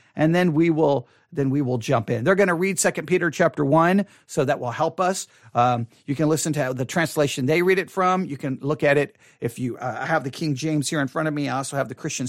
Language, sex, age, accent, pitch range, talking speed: English, male, 40-59, American, 140-190 Hz, 275 wpm